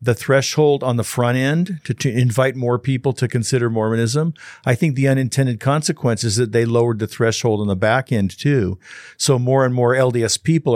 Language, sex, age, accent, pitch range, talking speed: English, male, 50-69, American, 110-130 Hz, 200 wpm